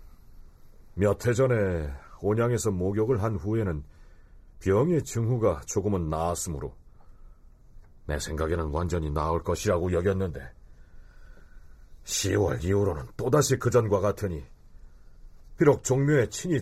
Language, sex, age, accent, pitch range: Korean, male, 40-59, native, 85-120 Hz